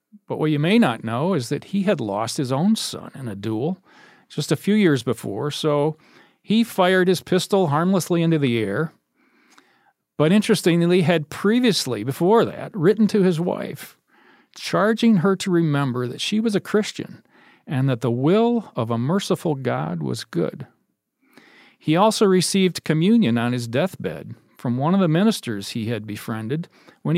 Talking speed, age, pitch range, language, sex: 170 wpm, 40-59, 130-190 Hz, English, male